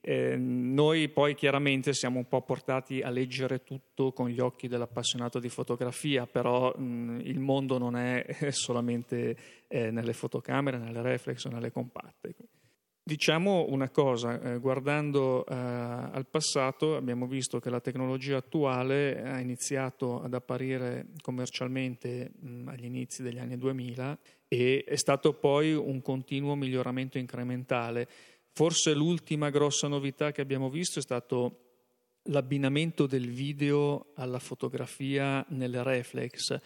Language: Italian